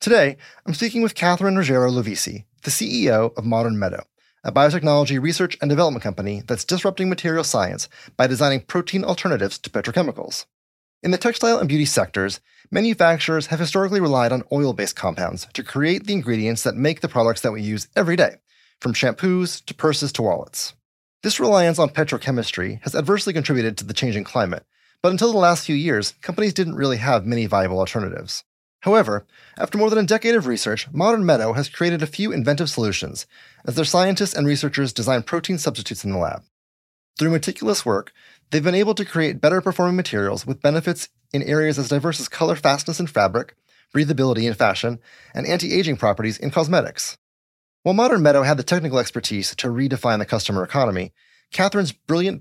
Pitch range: 115-175 Hz